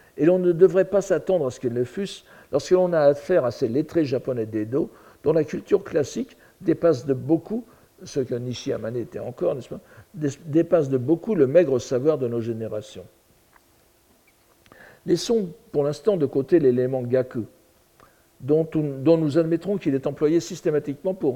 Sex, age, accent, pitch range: male, 60-79, French, 120-170 Hz